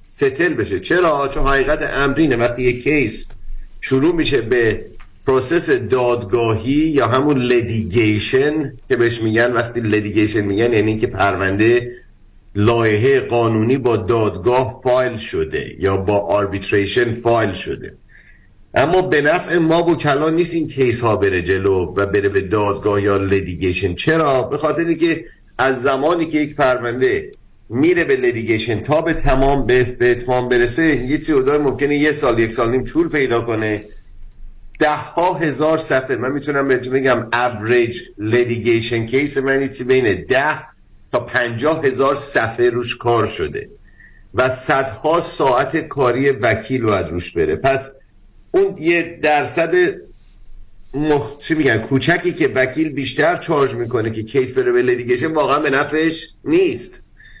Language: Persian